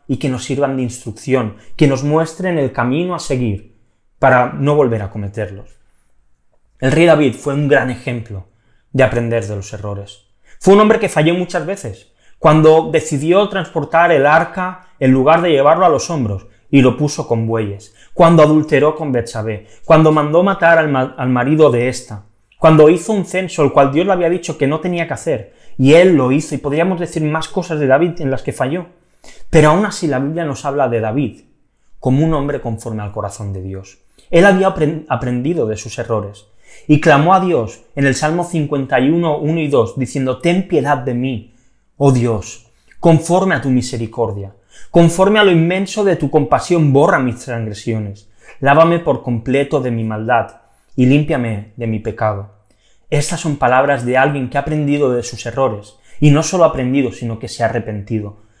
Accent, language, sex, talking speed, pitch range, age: Spanish, Spanish, male, 185 wpm, 115-160 Hz, 20-39